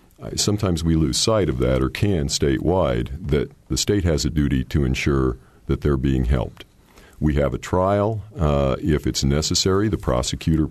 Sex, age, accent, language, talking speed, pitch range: male, 50-69, American, English, 175 wpm, 70-85 Hz